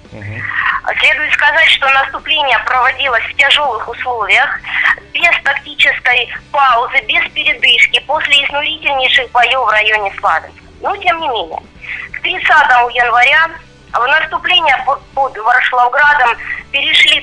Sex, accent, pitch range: female, native, 245-310 Hz